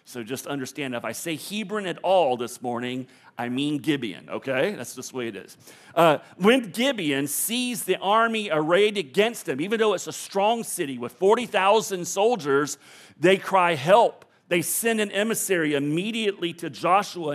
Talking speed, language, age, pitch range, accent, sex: 170 wpm, English, 40-59, 150-220 Hz, American, male